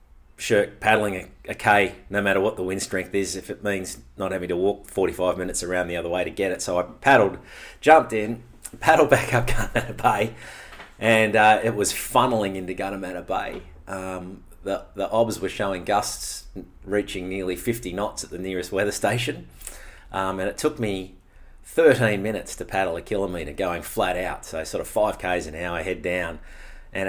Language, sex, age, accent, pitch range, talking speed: English, male, 30-49, Australian, 85-110 Hz, 190 wpm